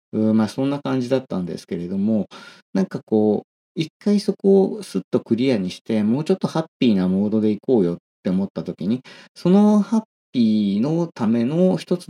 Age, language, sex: 40-59, Japanese, male